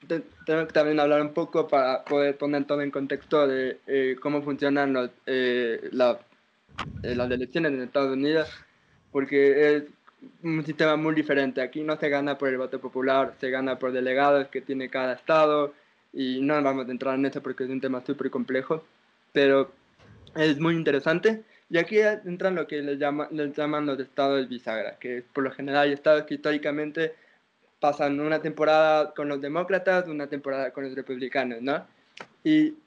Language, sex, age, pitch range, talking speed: Spanish, male, 20-39, 130-155 Hz, 180 wpm